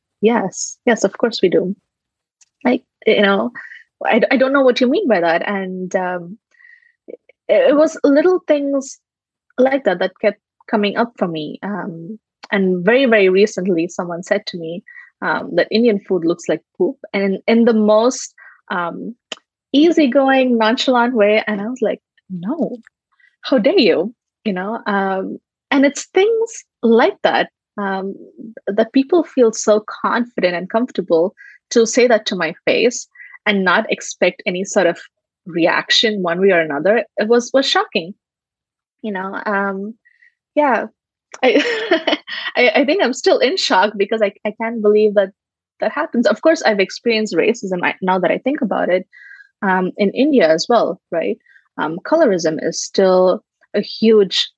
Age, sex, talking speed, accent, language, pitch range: 20-39, female, 160 wpm, Indian, English, 195-270 Hz